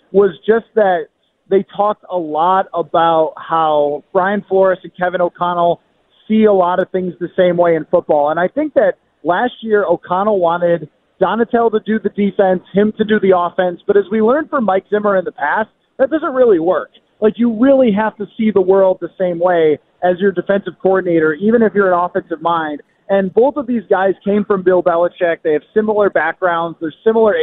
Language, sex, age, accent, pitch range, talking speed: English, male, 30-49, American, 175-215 Hz, 200 wpm